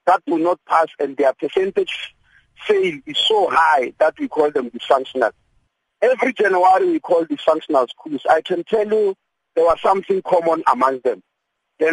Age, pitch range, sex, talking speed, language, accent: 50-69, 165-230 Hz, male, 170 wpm, English, South African